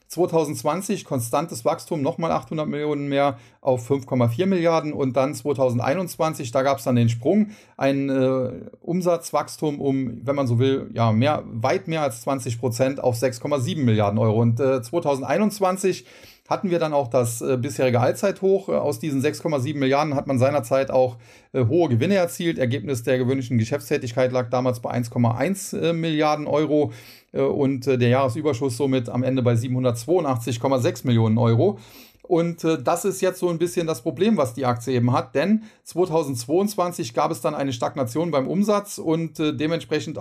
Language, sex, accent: German, male, German